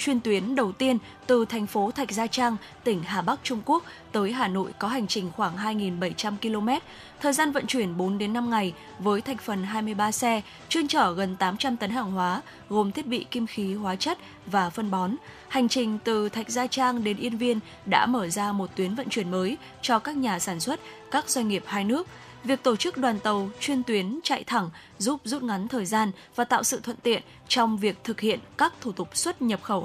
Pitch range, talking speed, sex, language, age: 205-255 Hz, 220 wpm, female, Vietnamese, 10-29